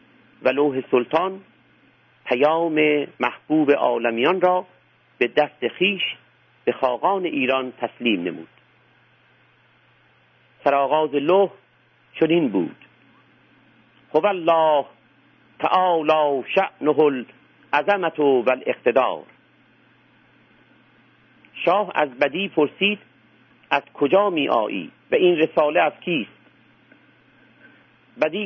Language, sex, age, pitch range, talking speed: Persian, male, 50-69, 135-175 Hz, 85 wpm